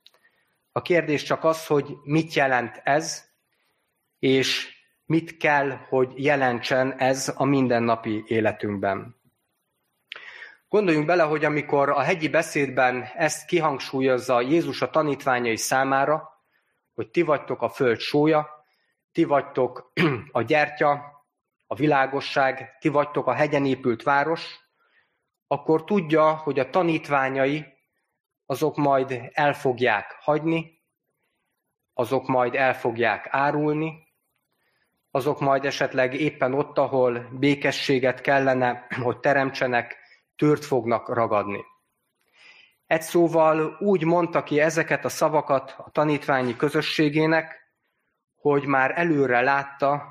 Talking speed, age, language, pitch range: 105 wpm, 30-49, Hungarian, 130-155 Hz